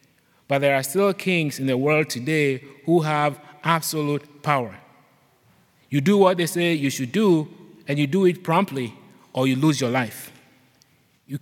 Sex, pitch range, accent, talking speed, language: male, 140-180 Hz, Nigerian, 170 wpm, English